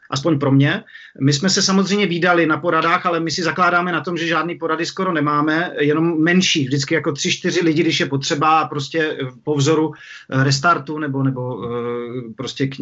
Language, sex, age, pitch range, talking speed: Czech, male, 40-59, 145-180 Hz, 180 wpm